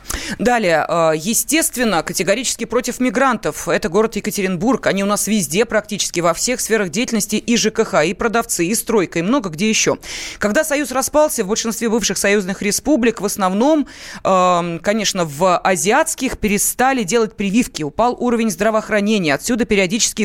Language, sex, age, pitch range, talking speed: Russian, female, 20-39, 190-240 Hz, 140 wpm